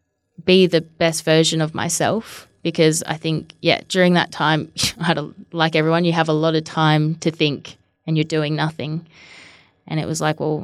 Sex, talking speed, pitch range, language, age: female, 180 wpm, 155-175 Hz, English, 20-39